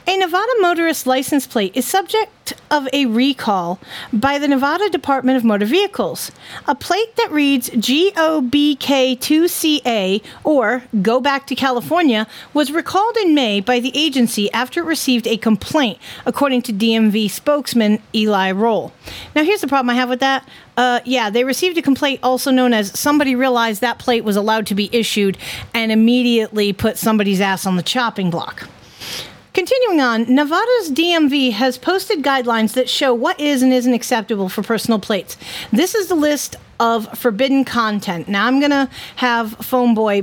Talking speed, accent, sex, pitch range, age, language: 165 wpm, American, female, 225-300 Hz, 40-59, English